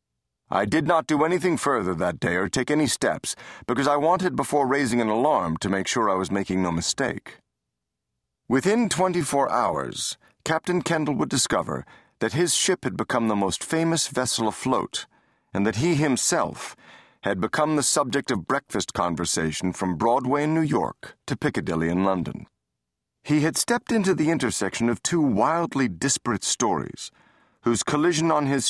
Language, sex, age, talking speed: English, male, 40-59, 165 wpm